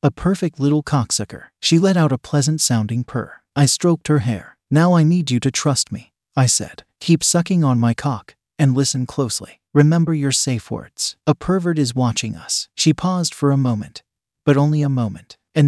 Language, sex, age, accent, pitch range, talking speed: English, male, 40-59, American, 120-155 Hz, 190 wpm